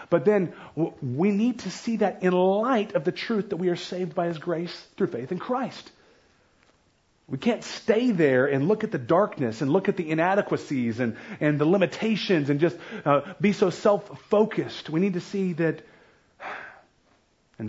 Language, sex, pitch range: English, male, 135-200 Hz